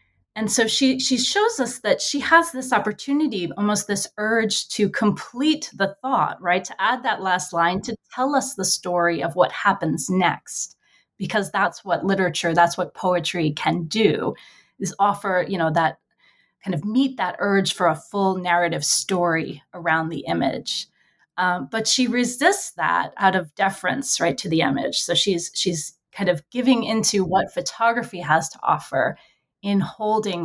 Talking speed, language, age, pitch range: 170 wpm, English, 20-39, 175-220 Hz